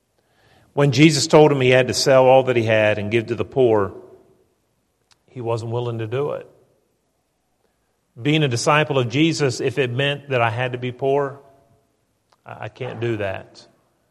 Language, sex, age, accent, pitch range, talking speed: English, male, 40-59, American, 120-145 Hz, 175 wpm